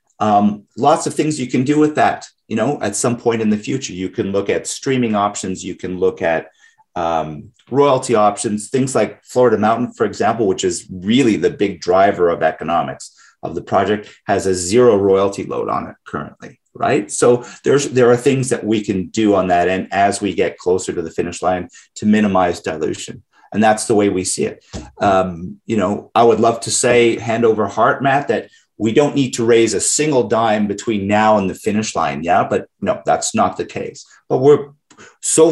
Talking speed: 210 wpm